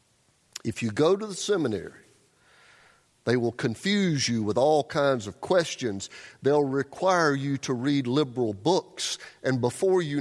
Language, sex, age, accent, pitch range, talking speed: English, male, 50-69, American, 110-145 Hz, 145 wpm